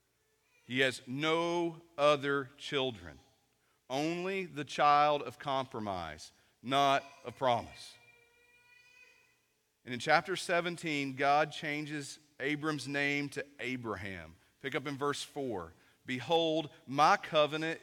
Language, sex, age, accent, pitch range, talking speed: English, male, 40-59, American, 115-150 Hz, 105 wpm